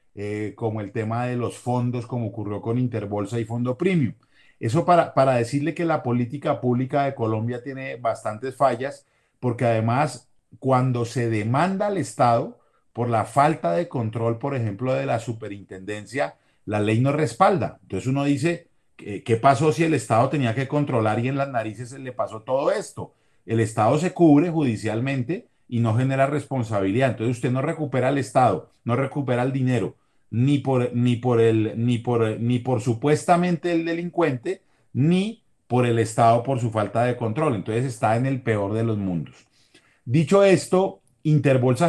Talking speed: 170 wpm